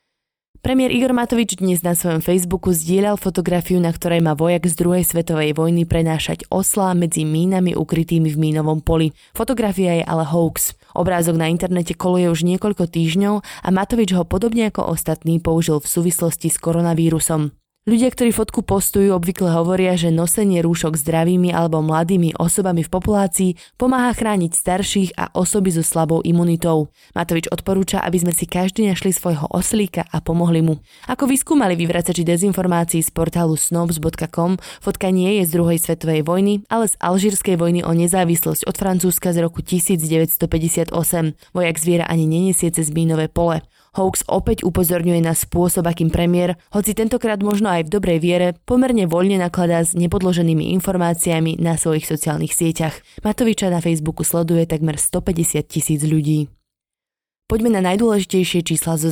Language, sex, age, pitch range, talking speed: Slovak, female, 20-39, 165-190 Hz, 155 wpm